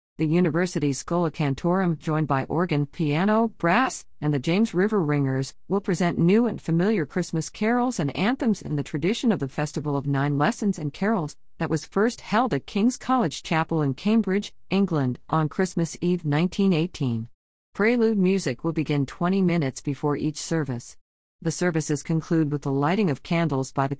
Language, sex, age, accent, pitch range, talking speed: English, female, 50-69, American, 145-195 Hz, 170 wpm